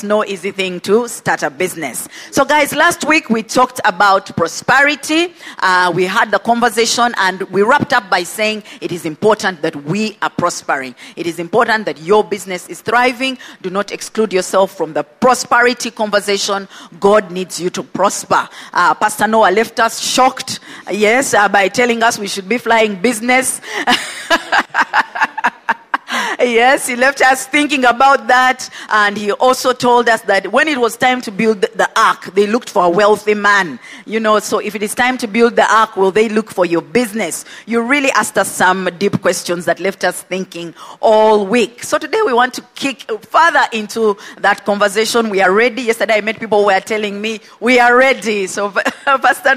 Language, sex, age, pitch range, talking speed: English, female, 40-59, 195-250 Hz, 185 wpm